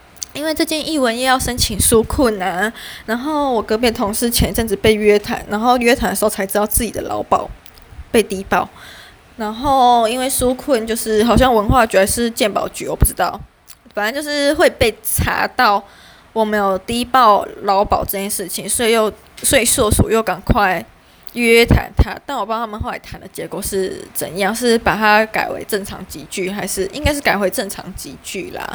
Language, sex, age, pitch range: Chinese, female, 20-39, 200-250 Hz